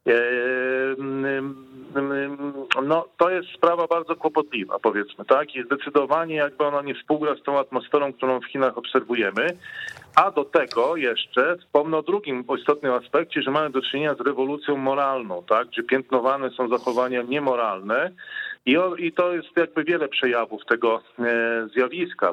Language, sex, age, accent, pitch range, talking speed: Polish, male, 40-59, native, 120-150 Hz, 140 wpm